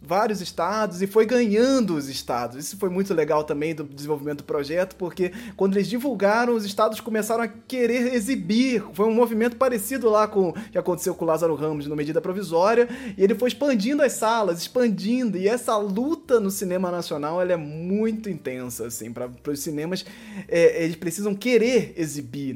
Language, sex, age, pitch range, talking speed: Portuguese, male, 20-39, 170-235 Hz, 180 wpm